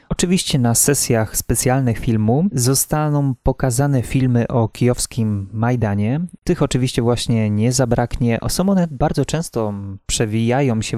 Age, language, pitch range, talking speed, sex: 20-39, Polish, 110-130 Hz, 120 wpm, male